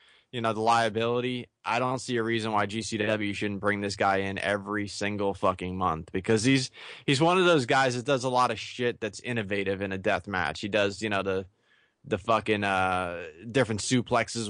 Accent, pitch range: American, 105-130 Hz